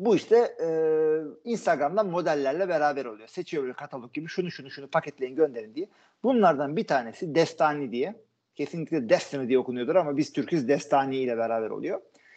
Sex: male